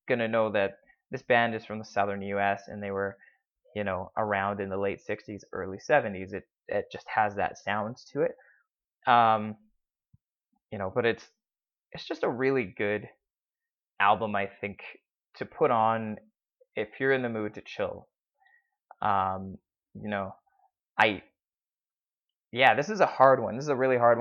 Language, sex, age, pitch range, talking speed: English, male, 20-39, 100-135 Hz, 170 wpm